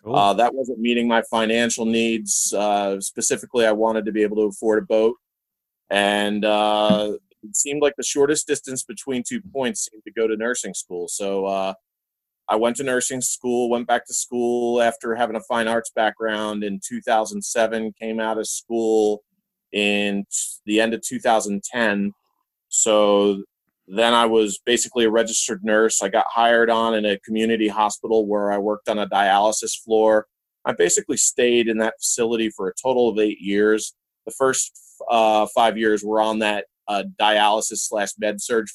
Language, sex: English, male